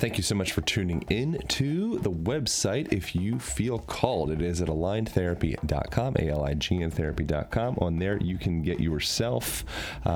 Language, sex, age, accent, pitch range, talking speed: English, male, 30-49, American, 80-105 Hz, 155 wpm